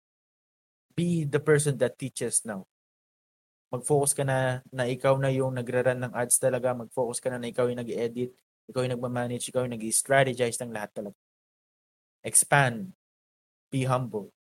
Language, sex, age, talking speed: Filipino, male, 20-39, 145 wpm